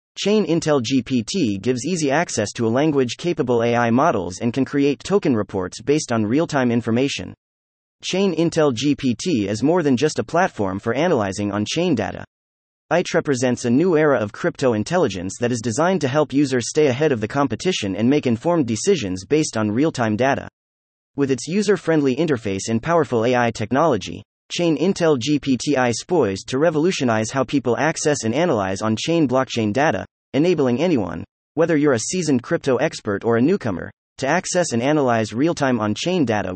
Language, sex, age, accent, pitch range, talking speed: English, male, 30-49, American, 110-160 Hz, 165 wpm